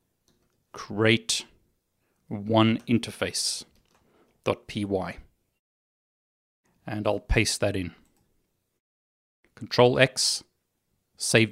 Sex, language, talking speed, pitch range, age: male, English, 55 wpm, 105-125 Hz, 30-49